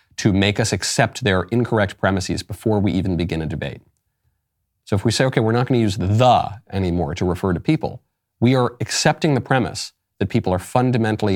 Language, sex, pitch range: English, male, 90-120 Hz